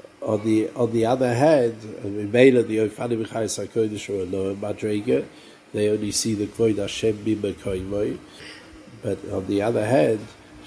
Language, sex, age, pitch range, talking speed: English, male, 50-69, 105-135 Hz, 145 wpm